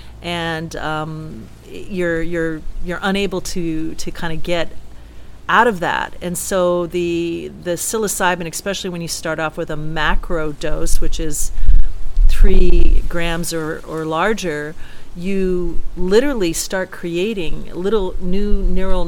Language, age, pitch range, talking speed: English, 40-59, 160-190 Hz, 130 wpm